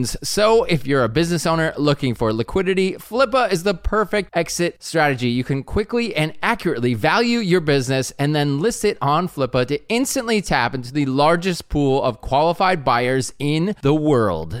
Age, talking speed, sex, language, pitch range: 20-39, 175 wpm, male, English, 135-185 Hz